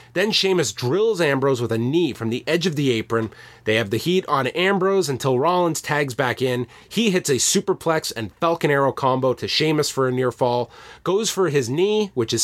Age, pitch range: 30-49, 120-170 Hz